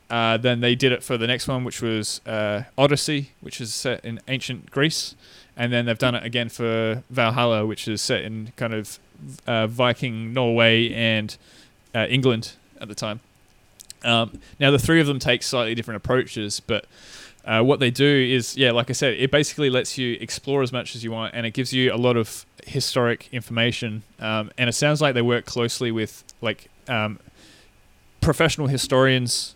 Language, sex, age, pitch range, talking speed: English, male, 20-39, 110-130 Hz, 190 wpm